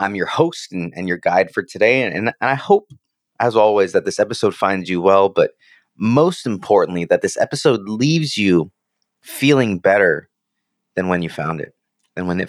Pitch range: 90-130 Hz